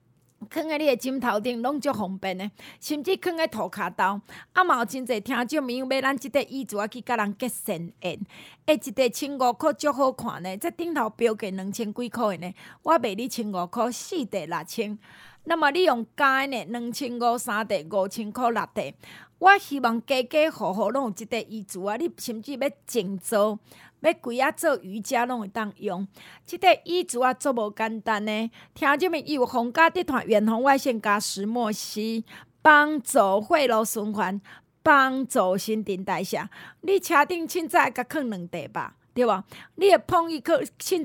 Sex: female